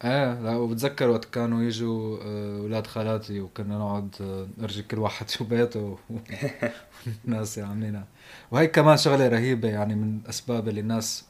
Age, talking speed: 20-39, 145 wpm